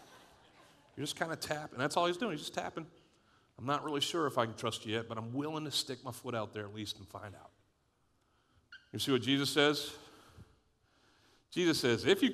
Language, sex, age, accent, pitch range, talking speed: English, male, 40-59, American, 115-165 Hz, 220 wpm